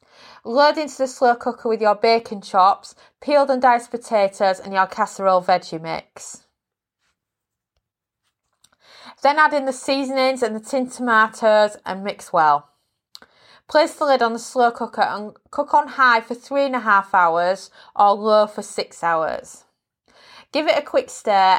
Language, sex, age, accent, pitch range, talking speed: English, female, 20-39, British, 185-250 Hz, 160 wpm